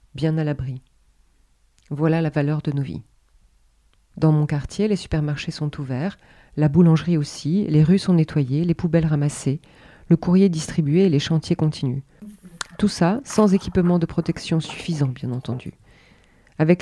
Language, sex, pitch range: French, female, 155-210 Hz